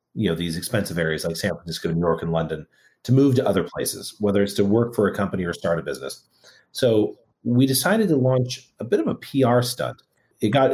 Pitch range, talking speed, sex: 100-140 Hz, 230 wpm, male